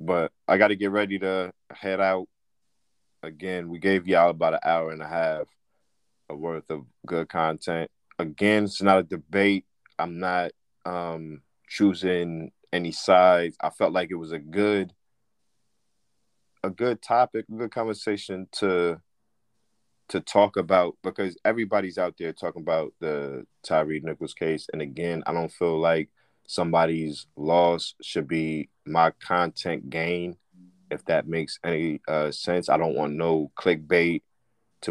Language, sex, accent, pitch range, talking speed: English, male, American, 80-95 Hz, 150 wpm